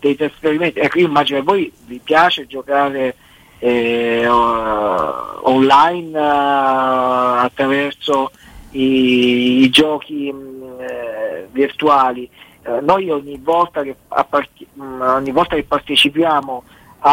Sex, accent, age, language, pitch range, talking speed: male, native, 40-59, Italian, 130-155 Hz, 105 wpm